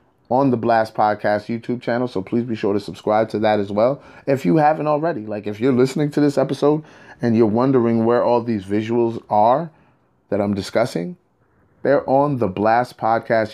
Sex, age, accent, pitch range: male, 30-49, American, 100-120 Hz